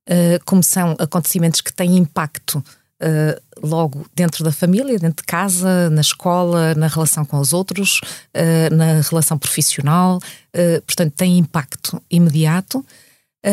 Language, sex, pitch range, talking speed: Portuguese, female, 155-195 Hz, 120 wpm